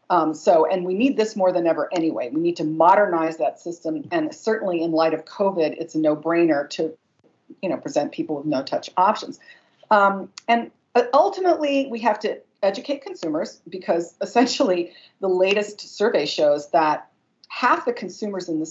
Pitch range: 165-235 Hz